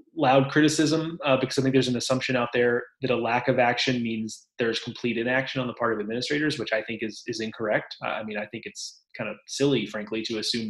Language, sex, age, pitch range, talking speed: English, male, 30-49, 110-135 Hz, 240 wpm